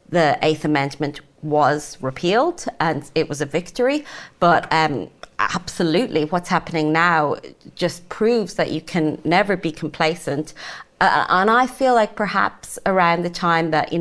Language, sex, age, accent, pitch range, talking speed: English, female, 30-49, British, 155-180 Hz, 150 wpm